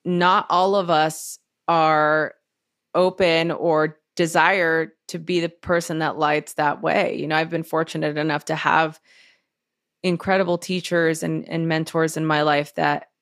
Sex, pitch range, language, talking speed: female, 150-170 Hz, English, 150 wpm